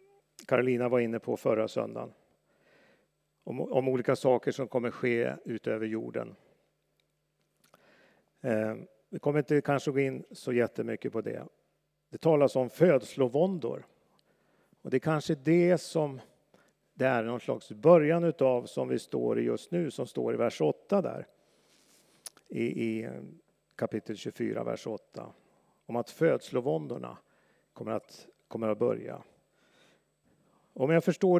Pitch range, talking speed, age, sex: 125-165 Hz, 135 wpm, 50-69, male